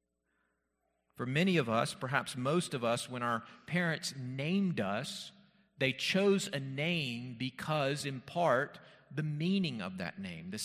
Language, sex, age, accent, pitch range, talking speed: English, male, 40-59, American, 125-160 Hz, 145 wpm